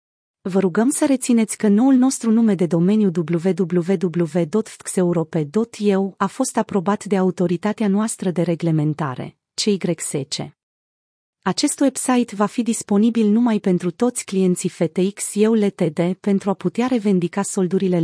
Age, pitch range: 30-49, 170-220 Hz